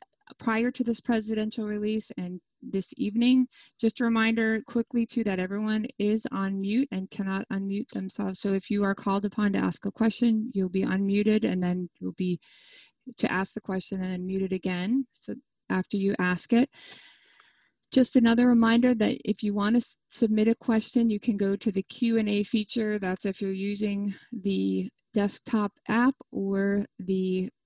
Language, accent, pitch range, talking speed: English, American, 200-235 Hz, 175 wpm